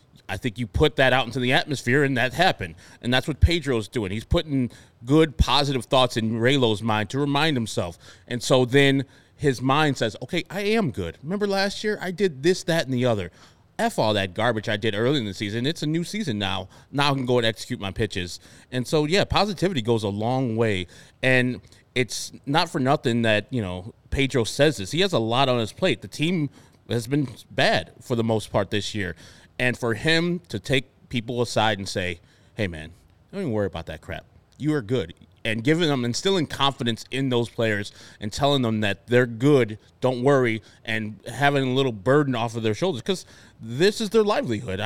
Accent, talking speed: American, 210 wpm